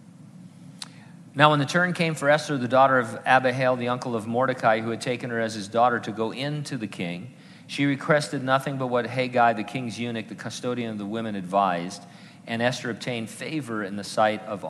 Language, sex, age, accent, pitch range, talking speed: English, male, 50-69, American, 115-150 Hz, 205 wpm